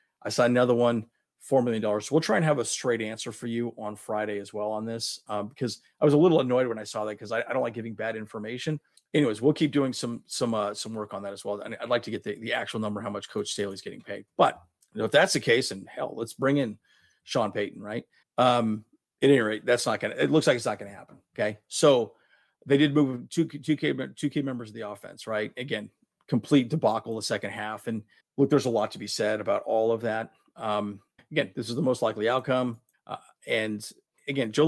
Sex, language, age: male, English, 40-59